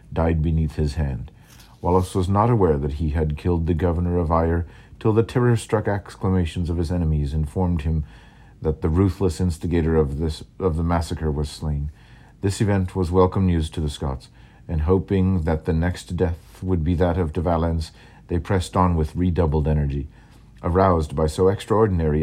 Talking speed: 175 wpm